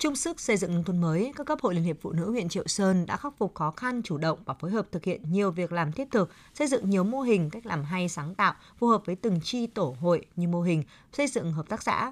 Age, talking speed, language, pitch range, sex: 20-39, 290 wpm, Vietnamese, 165-225 Hz, female